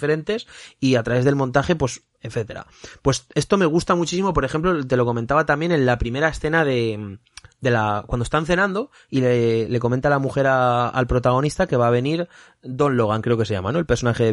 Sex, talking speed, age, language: male, 220 wpm, 30-49, Spanish